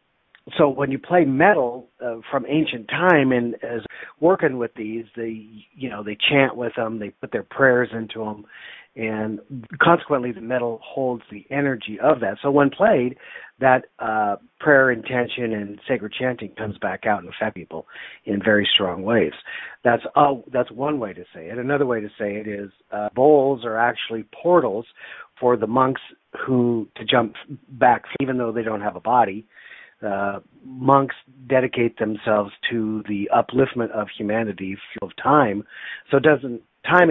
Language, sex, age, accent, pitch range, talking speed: English, male, 50-69, American, 110-135 Hz, 165 wpm